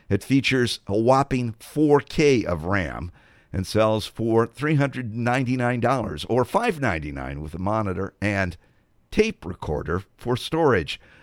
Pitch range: 95-135 Hz